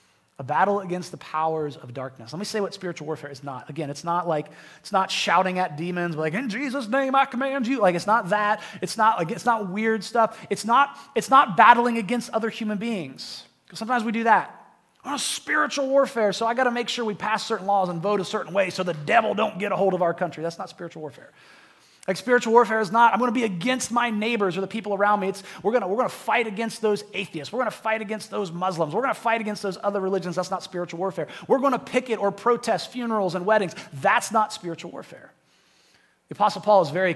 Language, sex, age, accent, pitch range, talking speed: English, male, 30-49, American, 170-225 Hz, 245 wpm